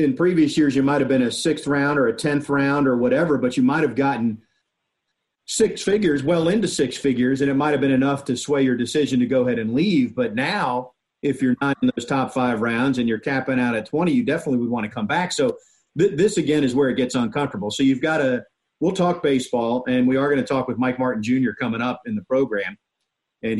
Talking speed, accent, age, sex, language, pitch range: 240 wpm, American, 40-59, male, English, 125-155 Hz